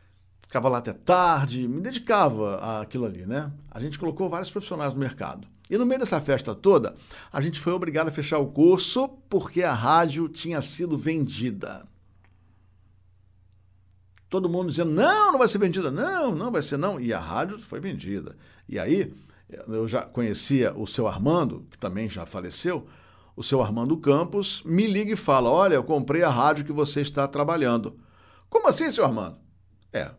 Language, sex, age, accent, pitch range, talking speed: Portuguese, male, 60-79, Brazilian, 100-165 Hz, 175 wpm